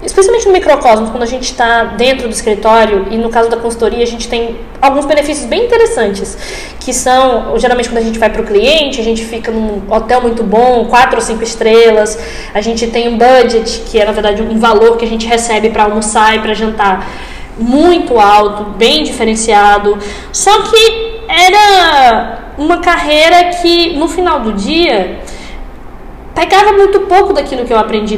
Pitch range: 225-325 Hz